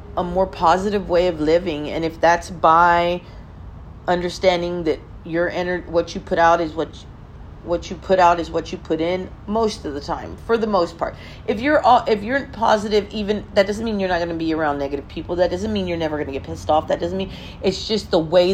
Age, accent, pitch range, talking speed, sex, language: 40-59, American, 145-180 Hz, 235 wpm, female, English